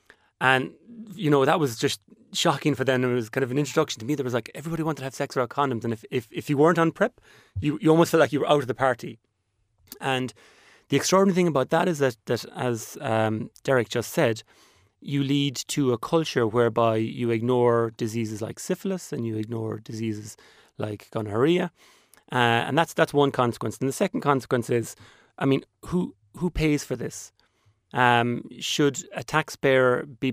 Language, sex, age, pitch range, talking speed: English, male, 30-49, 115-145 Hz, 200 wpm